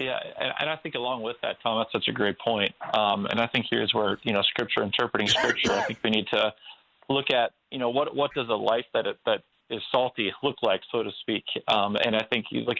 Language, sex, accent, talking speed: English, male, American, 260 wpm